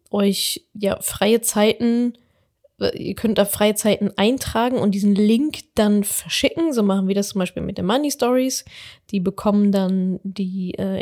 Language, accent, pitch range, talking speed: German, German, 195-225 Hz, 165 wpm